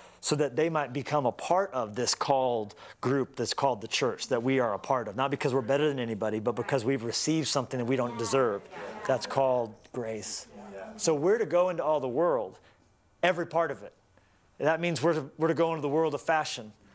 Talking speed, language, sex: 220 wpm, English, male